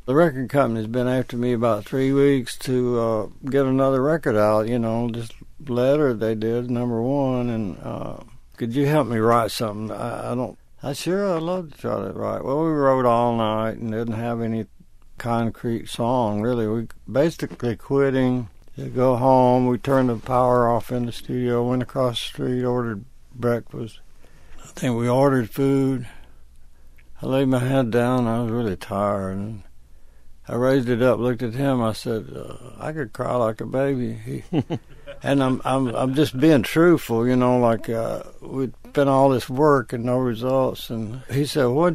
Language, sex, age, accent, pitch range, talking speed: English, male, 60-79, American, 115-135 Hz, 185 wpm